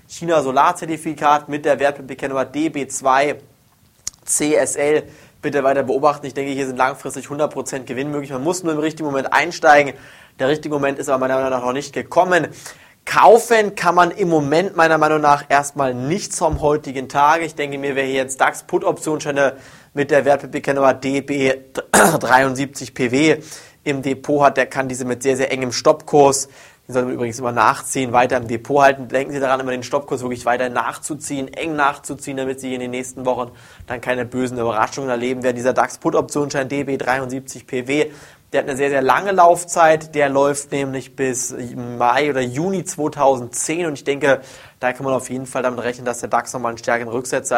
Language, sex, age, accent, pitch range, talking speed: German, male, 20-39, German, 125-145 Hz, 185 wpm